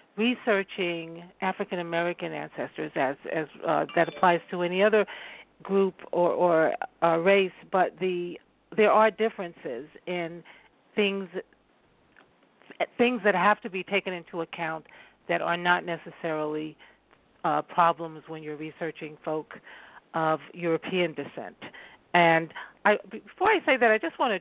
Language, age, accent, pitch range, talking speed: English, 50-69, American, 170-205 Hz, 135 wpm